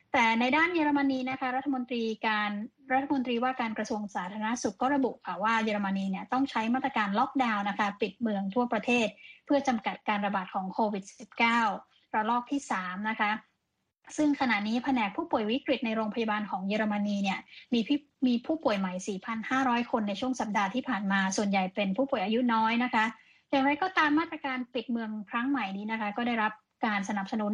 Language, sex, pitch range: Thai, female, 215-265 Hz